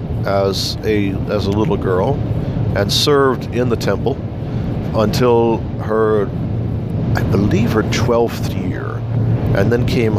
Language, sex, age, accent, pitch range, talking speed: English, male, 50-69, American, 110-125 Hz, 125 wpm